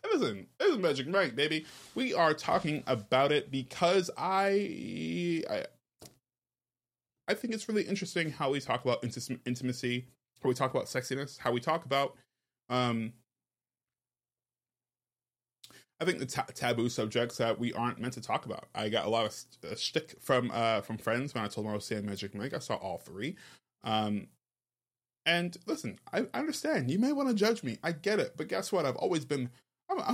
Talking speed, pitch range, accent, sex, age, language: 180 wpm, 110-150 Hz, American, male, 20-39, English